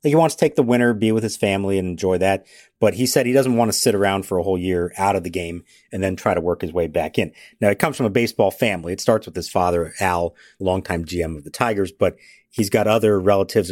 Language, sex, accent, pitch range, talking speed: English, male, American, 95-125 Hz, 270 wpm